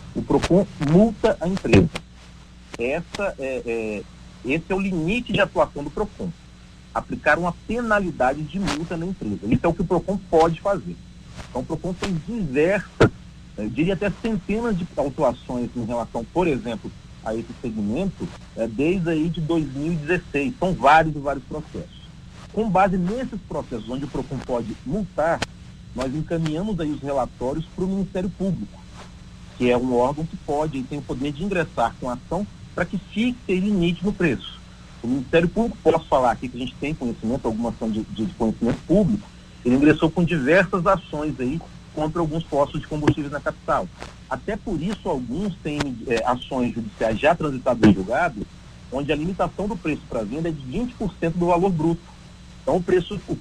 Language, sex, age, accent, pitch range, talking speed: Portuguese, male, 40-59, Brazilian, 135-185 Hz, 175 wpm